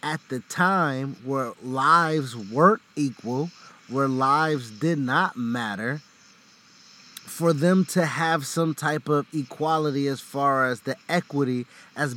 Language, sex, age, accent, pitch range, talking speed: English, male, 20-39, American, 140-195 Hz, 130 wpm